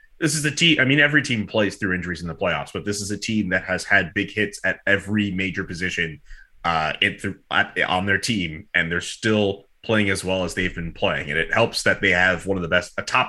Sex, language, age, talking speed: male, English, 30-49, 255 wpm